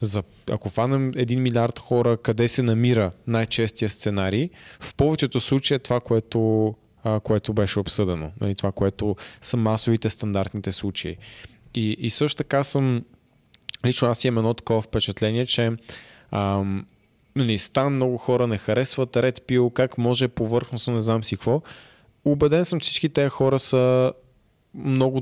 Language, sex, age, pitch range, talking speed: Bulgarian, male, 20-39, 110-130 Hz, 150 wpm